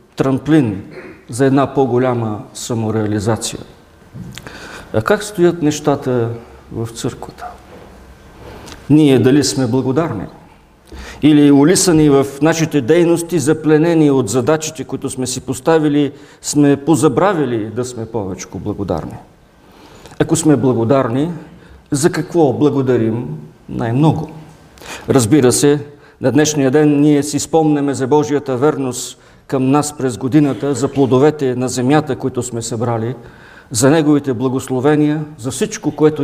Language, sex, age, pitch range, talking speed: English, male, 50-69, 125-155 Hz, 115 wpm